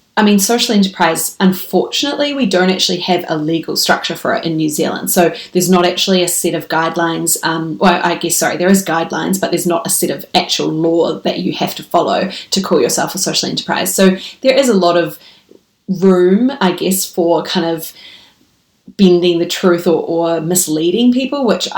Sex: female